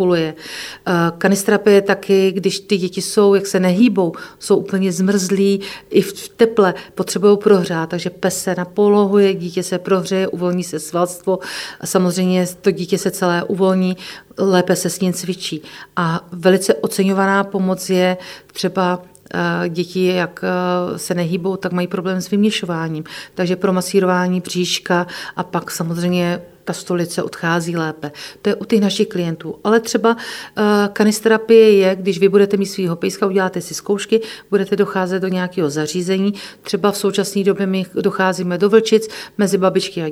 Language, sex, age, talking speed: Czech, female, 40-59, 150 wpm